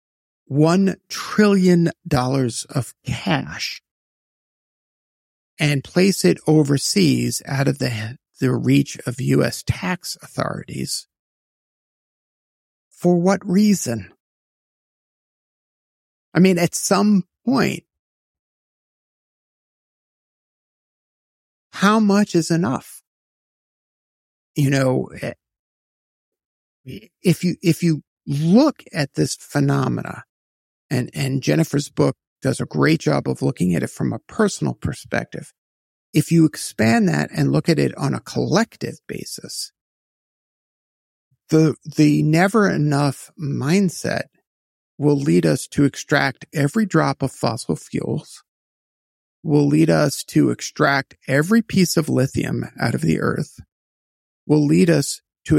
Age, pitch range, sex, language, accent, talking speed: 50-69, 130-175 Hz, male, English, American, 110 wpm